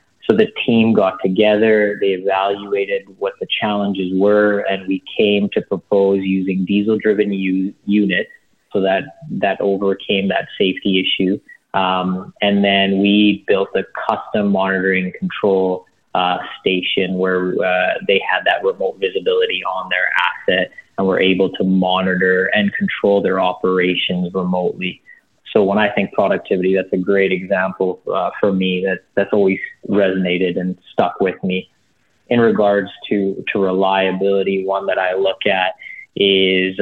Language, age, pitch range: English, 20-39, 95-100 Hz